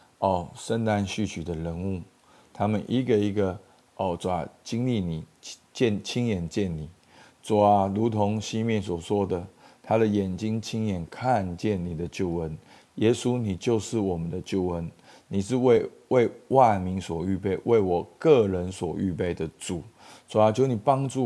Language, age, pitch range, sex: Chinese, 50-69, 90-110 Hz, male